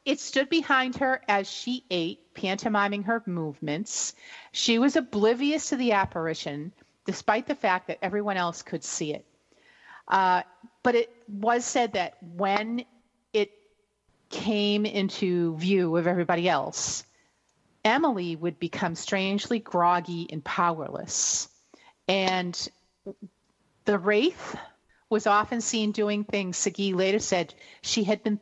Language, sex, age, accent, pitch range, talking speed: English, female, 40-59, American, 180-235 Hz, 125 wpm